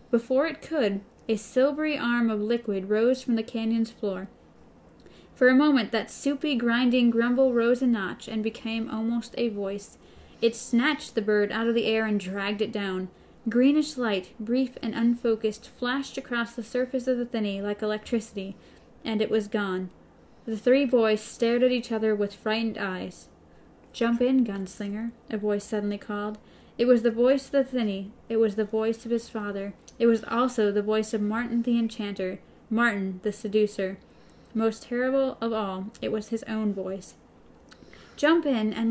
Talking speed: 175 wpm